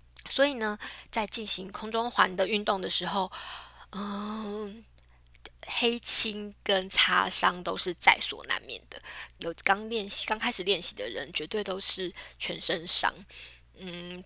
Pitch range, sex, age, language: 180-230 Hz, female, 10-29, Chinese